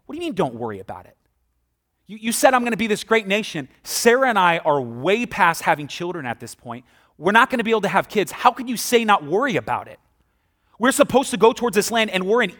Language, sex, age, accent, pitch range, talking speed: English, male, 30-49, American, 145-205 Hz, 265 wpm